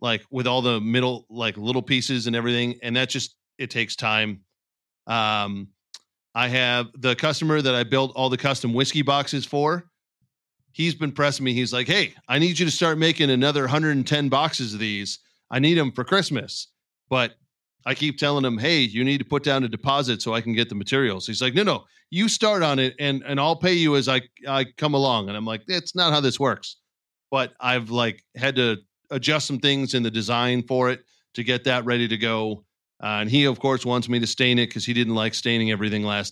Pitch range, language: 115-145 Hz, English